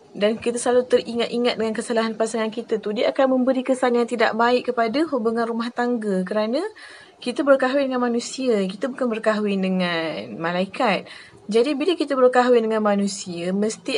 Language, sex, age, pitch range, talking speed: Malay, female, 20-39, 205-245 Hz, 160 wpm